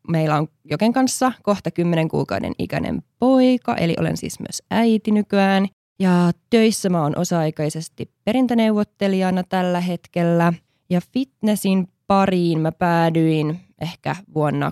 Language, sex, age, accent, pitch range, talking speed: Finnish, female, 20-39, native, 160-205 Hz, 120 wpm